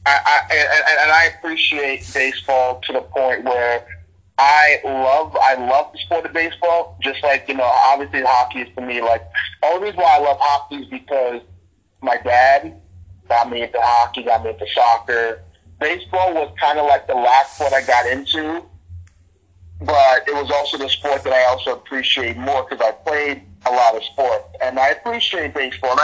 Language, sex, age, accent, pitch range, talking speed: English, male, 30-49, American, 115-155 Hz, 185 wpm